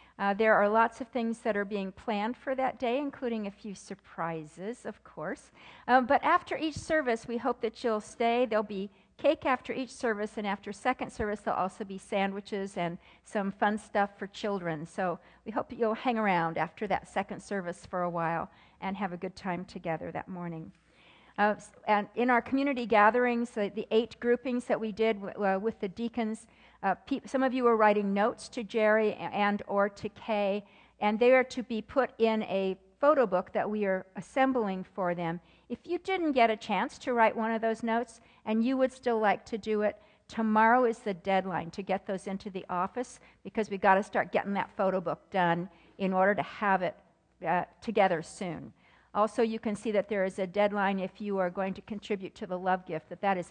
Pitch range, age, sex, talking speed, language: 190-235 Hz, 50-69, female, 205 wpm, English